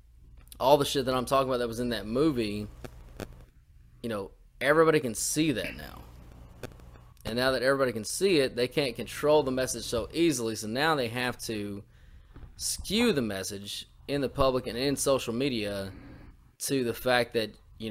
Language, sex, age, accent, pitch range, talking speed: English, male, 20-39, American, 100-135 Hz, 180 wpm